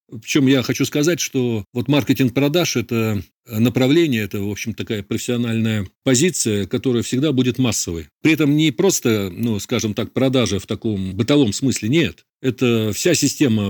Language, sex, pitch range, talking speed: Russian, male, 105-135 Hz, 155 wpm